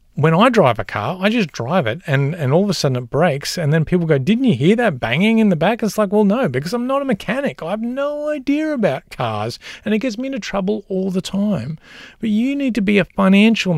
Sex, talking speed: male, 260 wpm